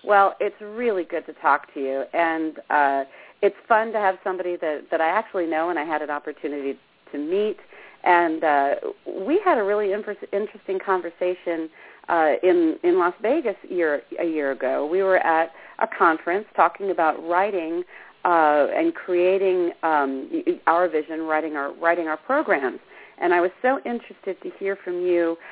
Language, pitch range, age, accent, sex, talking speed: English, 160-225 Hz, 40-59, American, female, 175 wpm